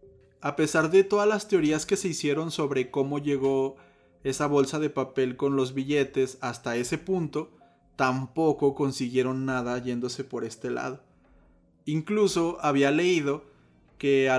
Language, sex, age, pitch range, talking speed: Spanish, male, 20-39, 125-145 Hz, 140 wpm